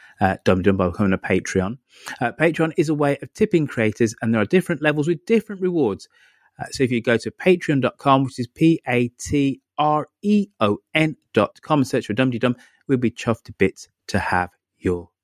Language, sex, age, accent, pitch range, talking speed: English, male, 30-49, British, 110-160 Hz, 175 wpm